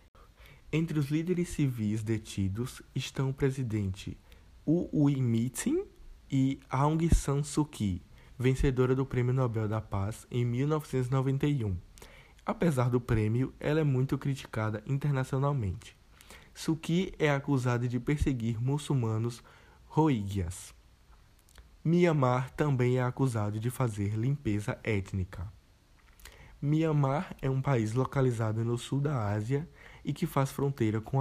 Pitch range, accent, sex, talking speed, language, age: 105-140 Hz, Brazilian, male, 115 wpm, Portuguese, 20-39